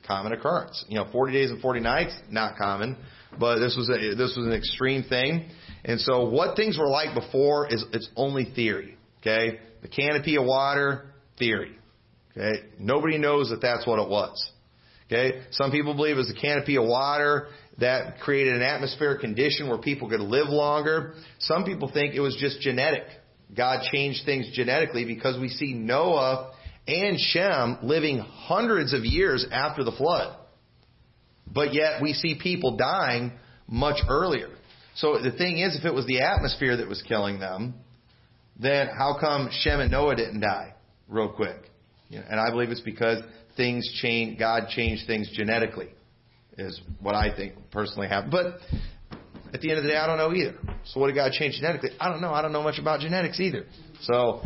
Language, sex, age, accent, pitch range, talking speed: English, male, 40-59, American, 115-145 Hz, 180 wpm